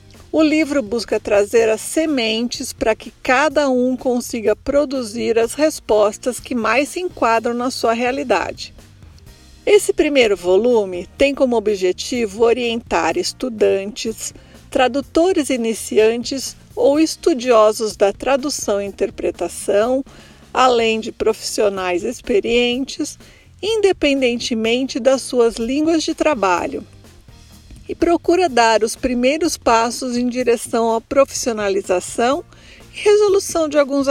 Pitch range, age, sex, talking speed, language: 225-285 Hz, 50-69, female, 105 wpm, Portuguese